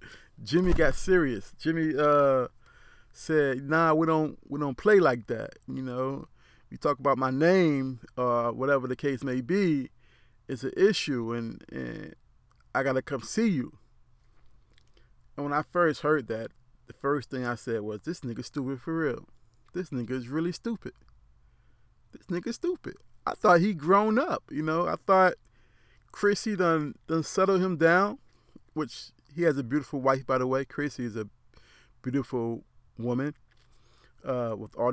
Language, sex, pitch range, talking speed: English, male, 120-165 Hz, 160 wpm